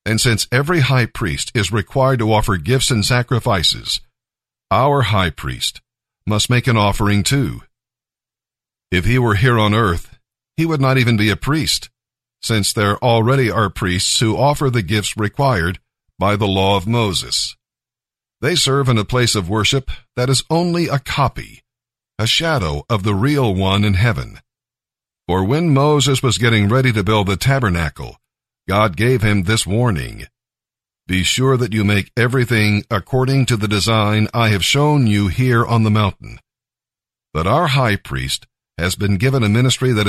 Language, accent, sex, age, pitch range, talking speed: English, American, male, 50-69, 105-130 Hz, 165 wpm